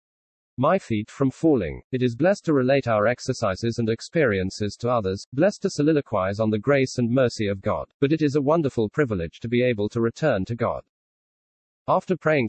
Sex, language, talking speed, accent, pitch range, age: male, English, 190 wpm, British, 110-140 Hz, 40-59